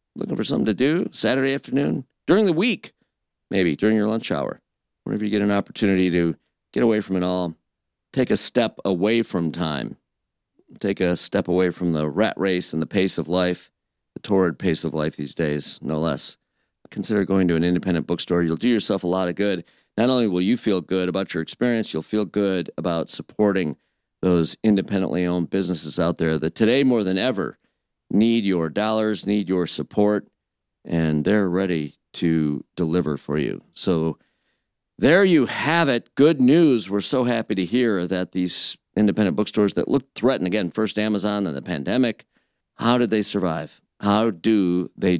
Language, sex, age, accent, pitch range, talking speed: English, male, 50-69, American, 85-105 Hz, 180 wpm